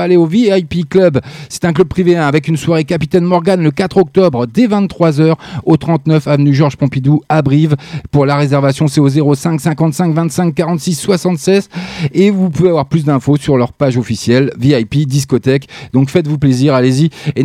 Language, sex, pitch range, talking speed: French, male, 125-155 Hz, 175 wpm